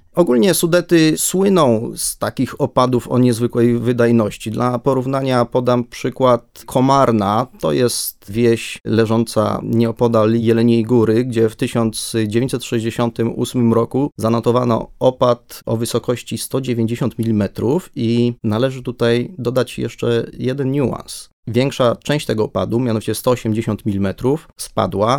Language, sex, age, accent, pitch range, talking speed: Polish, male, 30-49, native, 115-130 Hz, 110 wpm